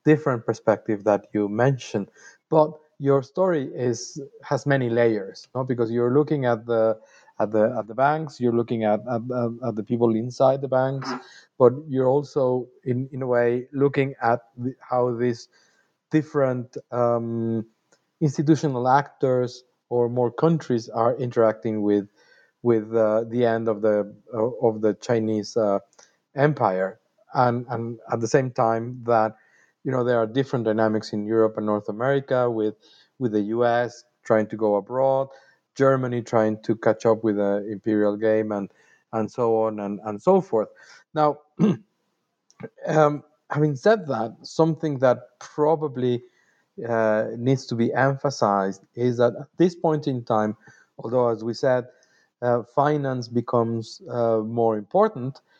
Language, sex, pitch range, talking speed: English, male, 110-135 Hz, 150 wpm